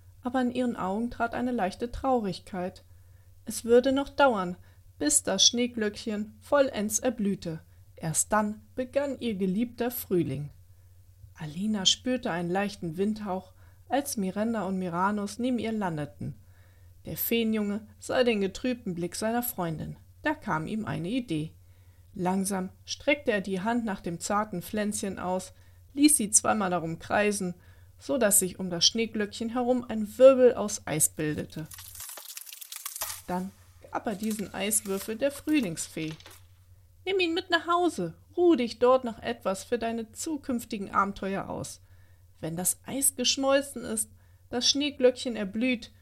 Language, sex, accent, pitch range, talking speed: German, female, German, 160-245 Hz, 135 wpm